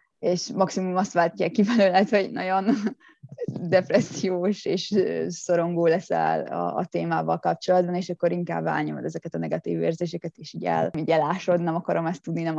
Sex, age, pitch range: female, 20-39, 165-190 Hz